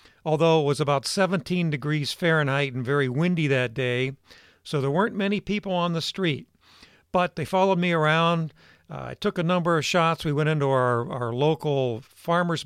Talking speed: 185 wpm